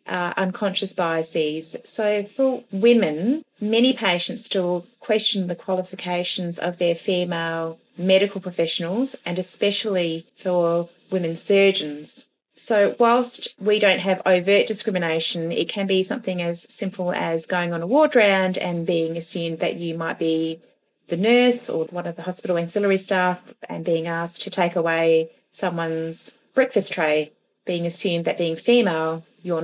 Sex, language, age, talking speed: female, English, 30-49, 145 wpm